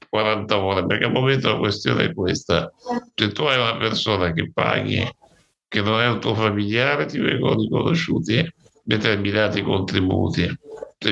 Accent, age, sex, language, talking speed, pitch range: native, 60-79, male, Italian, 155 wpm, 100-120 Hz